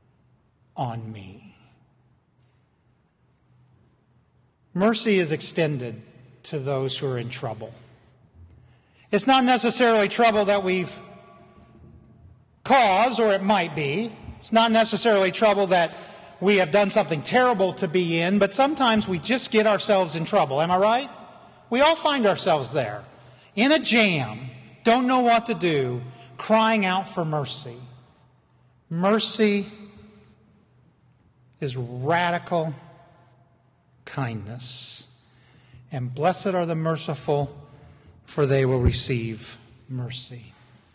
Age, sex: 50-69, male